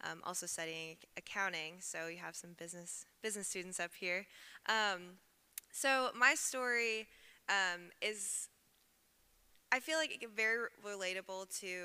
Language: English